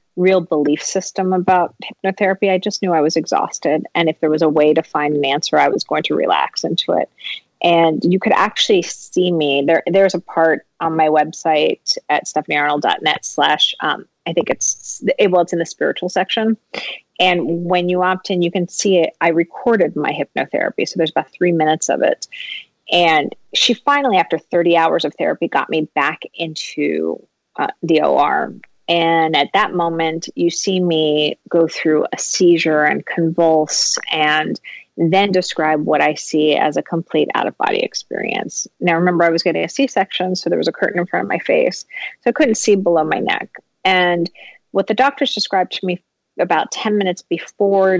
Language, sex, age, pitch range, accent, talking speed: English, female, 30-49, 160-190 Hz, American, 190 wpm